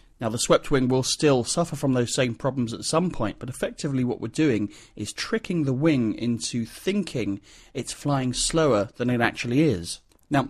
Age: 30-49